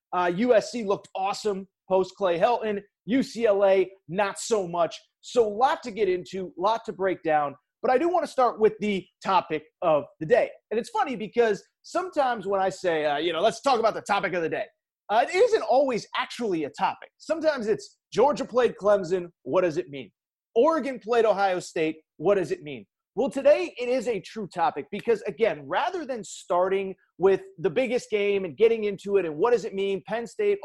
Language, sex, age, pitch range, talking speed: English, male, 30-49, 185-255 Hz, 205 wpm